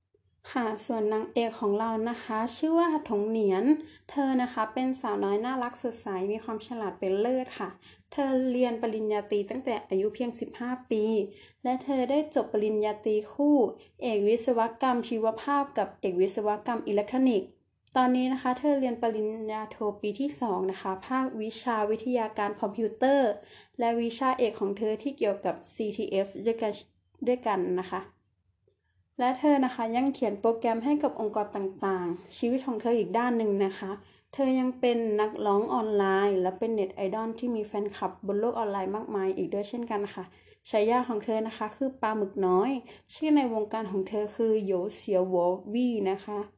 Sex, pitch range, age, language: female, 205-245 Hz, 20-39, Thai